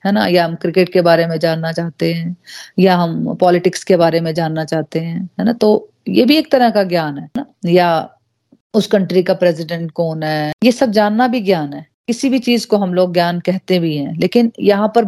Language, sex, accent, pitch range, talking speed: Hindi, female, native, 175-215 Hz, 225 wpm